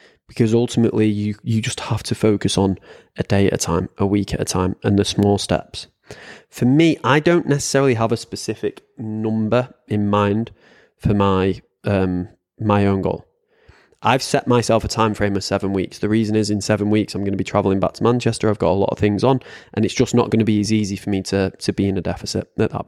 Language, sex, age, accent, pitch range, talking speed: English, male, 20-39, British, 100-120 Hz, 235 wpm